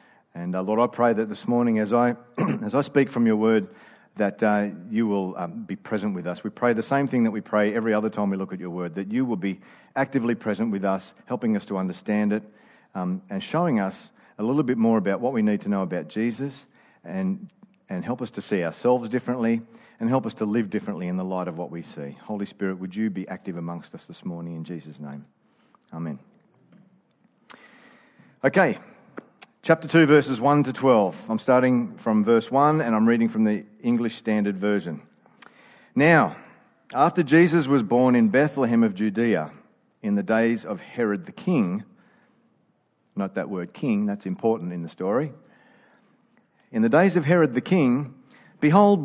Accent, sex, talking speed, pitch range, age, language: Australian, male, 195 wpm, 105-155 Hz, 40-59, English